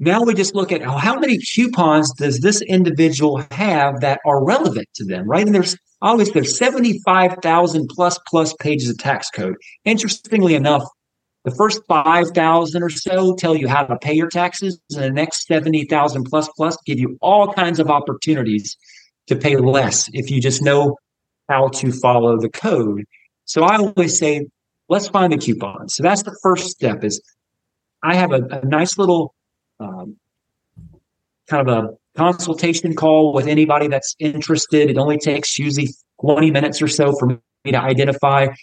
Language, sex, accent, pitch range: English, male, American, 135-175 Hz